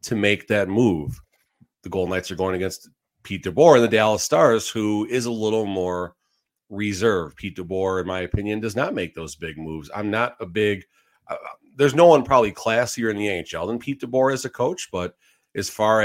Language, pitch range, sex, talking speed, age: English, 95-115 Hz, male, 205 wpm, 40-59